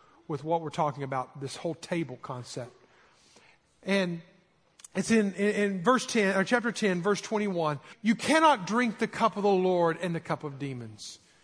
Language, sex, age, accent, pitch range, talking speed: English, male, 50-69, American, 145-195 Hz, 180 wpm